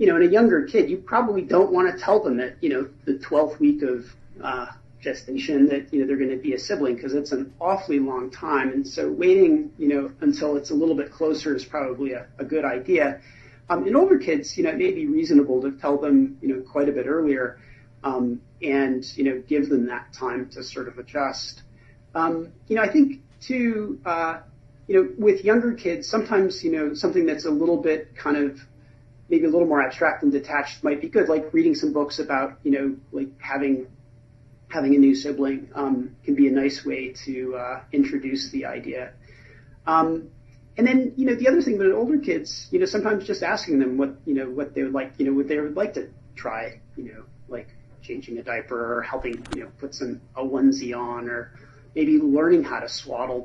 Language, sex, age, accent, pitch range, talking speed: English, male, 40-59, American, 130-170 Hz, 220 wpm